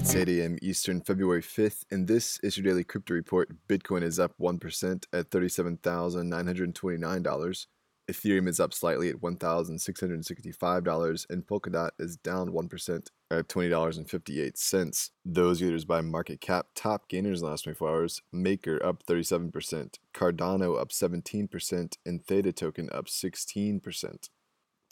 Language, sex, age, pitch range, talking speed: English, male, 20-39, 85-95 Hz, 130 wpm